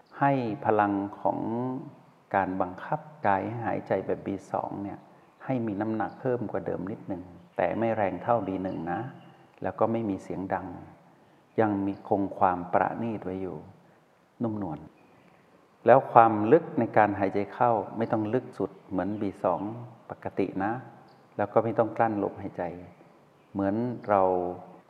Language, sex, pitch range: Thai, male, 95-115 Hz